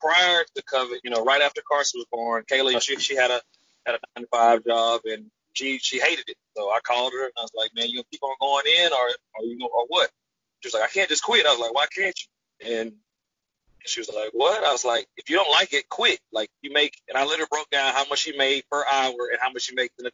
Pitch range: 120-140 Hz